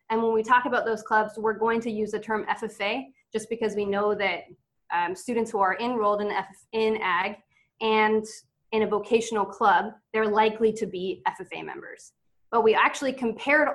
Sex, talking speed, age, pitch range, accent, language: female, 185 wpm, 20-39, 205-250 Hz, American, English